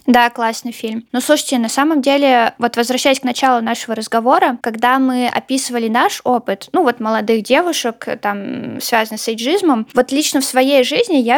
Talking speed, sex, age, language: 175 wpm, female, 20-39, Russian